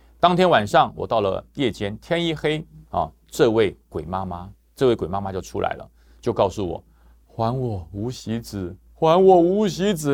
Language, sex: Chinese, male